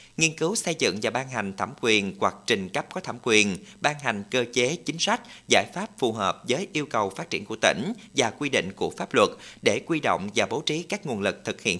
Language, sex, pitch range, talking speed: Vietnamese, male, 110-160 Hz, 250 wpm